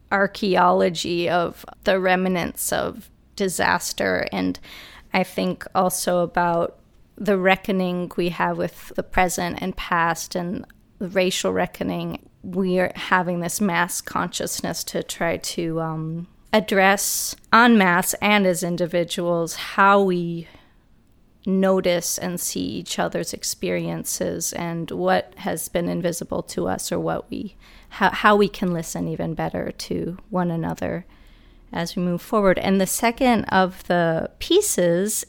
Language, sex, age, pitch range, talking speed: English, female, 30-49, 170-200 Hz, 135 wpm